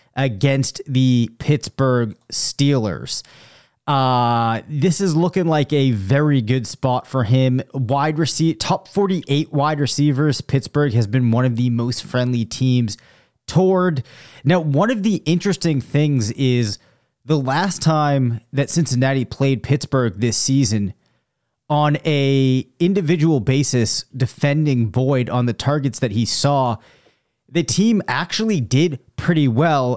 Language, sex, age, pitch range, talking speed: English, male, 30-49, 120-145 Hz, 130 wpm